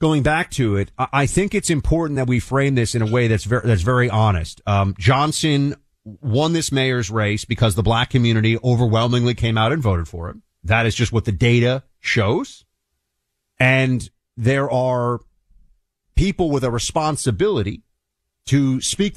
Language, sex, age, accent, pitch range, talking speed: English, male, 40-59, American, 110-155 Hz, 165 wpm